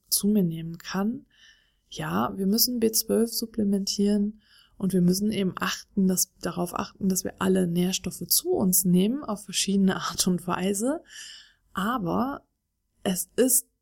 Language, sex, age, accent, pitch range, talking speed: German, female, 20-39, German, 180-215 Hz, 130 wpm